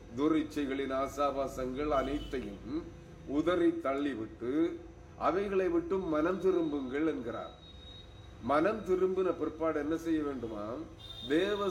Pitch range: 140-170 Hz